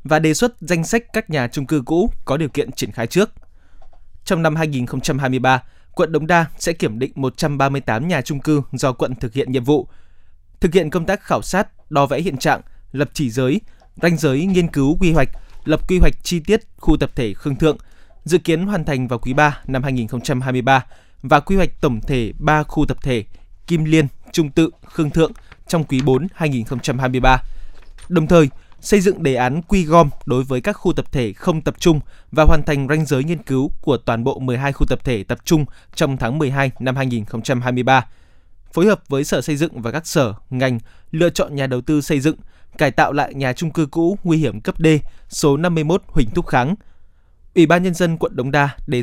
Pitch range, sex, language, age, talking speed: 130-165 Hz, male, Vietnamese, 20-39, 220 wpm